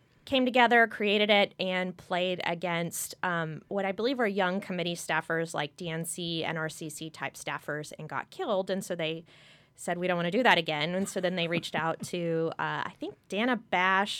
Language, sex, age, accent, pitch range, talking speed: English, female, 20-39, American, 165-205 Hz, 190 wpm